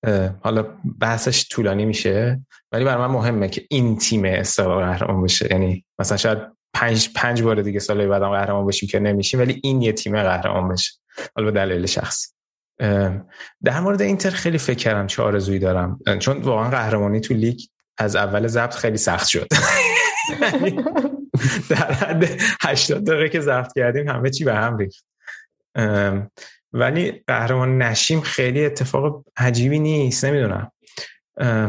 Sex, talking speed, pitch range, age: male, 140 wpm, 95-125 Hz, 20-39